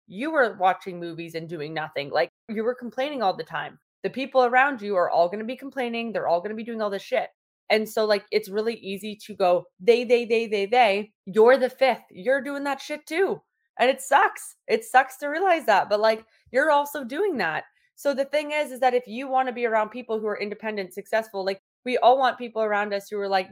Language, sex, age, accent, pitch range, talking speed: English, female, 20-39, American, 190-240 Hz, 240 wpm